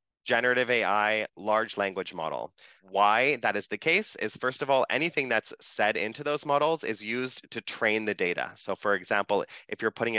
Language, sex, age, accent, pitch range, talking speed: English, male, 20-39, American, 100-125 Hz, 190 wpm